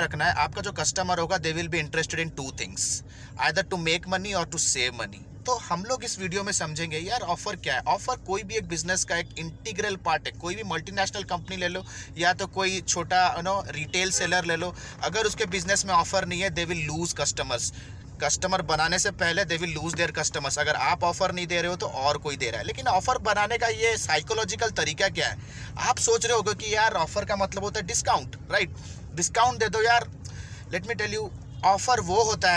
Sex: male